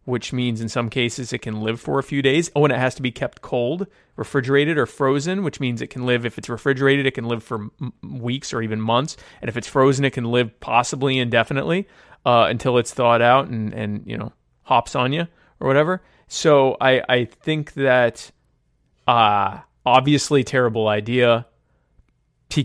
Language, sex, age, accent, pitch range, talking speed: English, male, 30-49, American, 110-140 Hz, 195 wpm